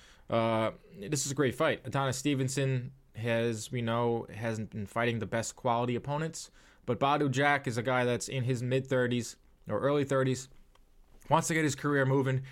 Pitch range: 115-145 Hz